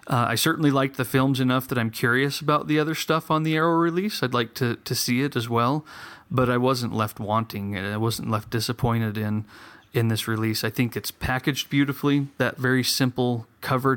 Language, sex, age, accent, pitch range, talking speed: English, male, 30-49, American, 110-130 Hz, 210 wpm